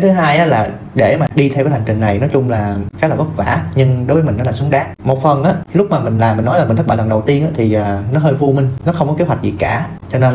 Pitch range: 110-145 Hz